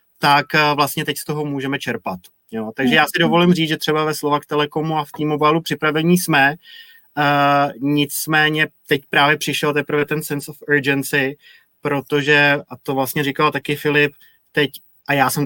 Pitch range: 135-150 Hz